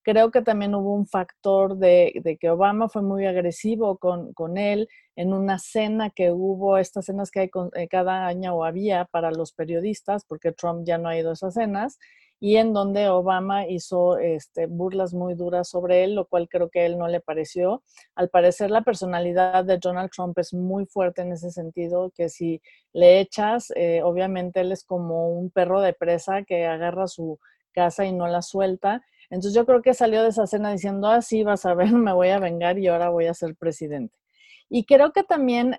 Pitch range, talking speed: 175-210 Hz, 210 wpm